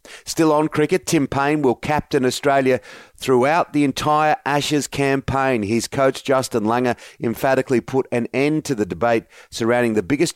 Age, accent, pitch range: 40-59, Australian, 115-140 Hz